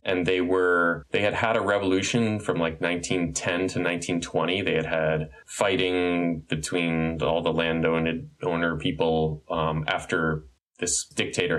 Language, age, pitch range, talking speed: English, 20-39, 80-95 Hz, 135 wpm